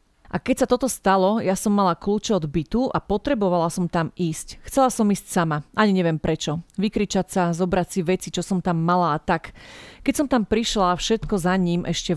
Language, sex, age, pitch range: Slovak, female, 40-59, 170-210 Hz